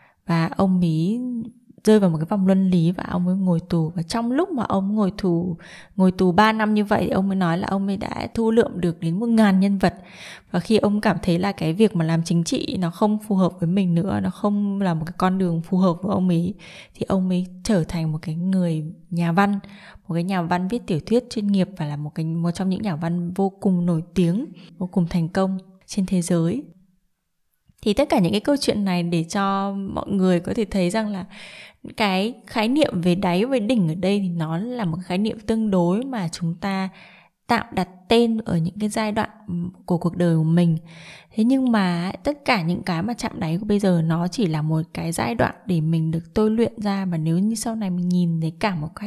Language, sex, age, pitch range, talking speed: Vietnamese, female, 20-39, 170-210 Hz, 245 wpm